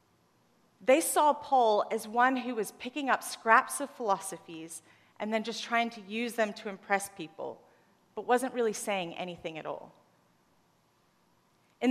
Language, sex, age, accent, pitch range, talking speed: English, female, 30-49, American, 200-260 Hz, 150 wpm